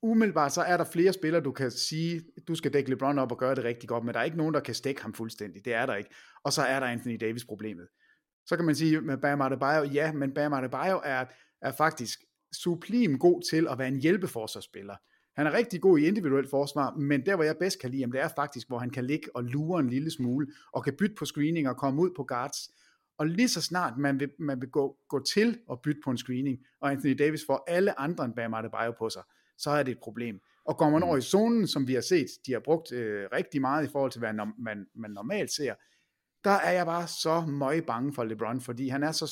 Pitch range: 125-160 Hz